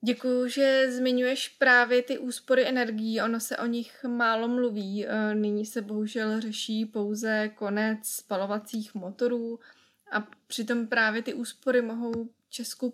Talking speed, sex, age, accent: 130 wpm, female, 20-39, native